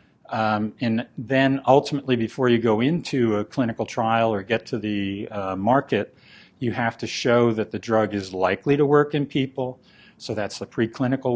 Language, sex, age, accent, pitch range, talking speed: English, male, 50-69, American, 110-130 Hz, 180 wpm